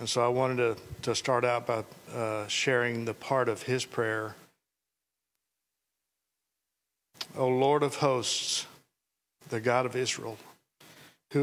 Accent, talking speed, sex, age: American, 130 wpm, male, 50-69